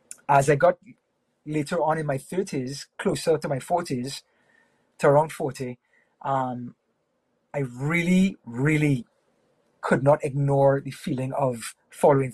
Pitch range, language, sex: 140-170 Hz, English, male